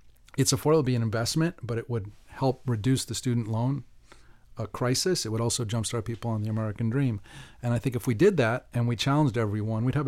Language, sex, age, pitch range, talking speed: English, male, 40-59, 115-140 Hz, 220 wpm